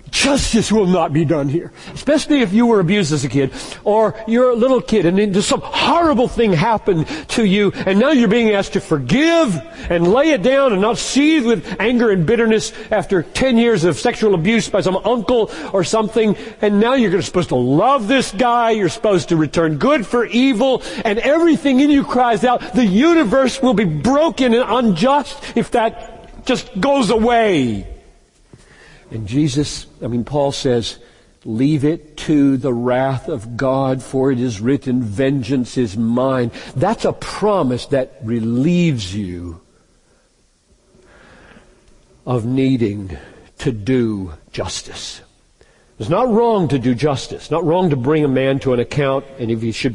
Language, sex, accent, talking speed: English, male, American, 170 wpm